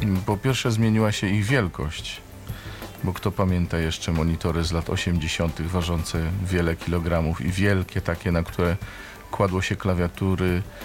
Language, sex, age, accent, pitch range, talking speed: Polish, male, 40-59, native, 85-105 Hz, 140 wpm